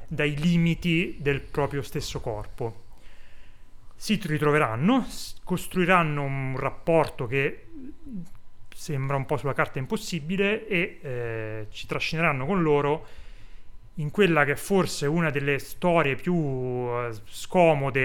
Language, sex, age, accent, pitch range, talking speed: Italian, male, 30-49, native, 120-160 Hz, 115 wpm